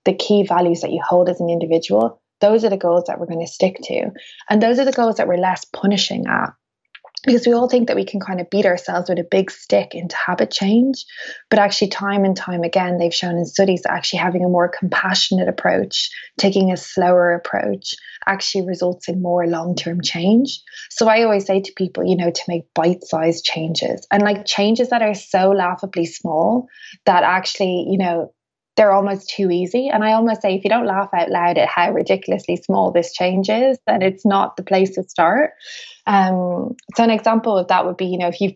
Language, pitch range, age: English, 175-210 Hz, 20-39